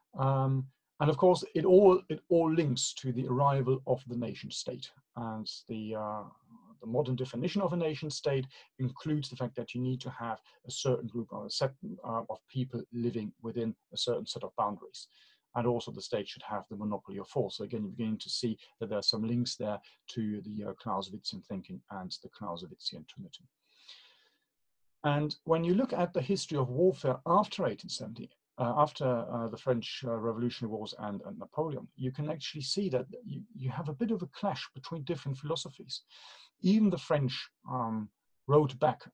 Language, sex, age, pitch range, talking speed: English, male, 40-59, 115-150 Hz, 190 wpm